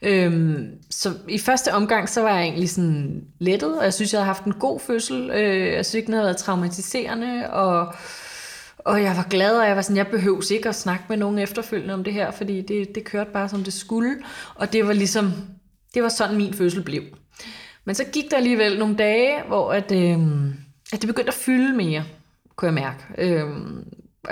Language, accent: Danish, native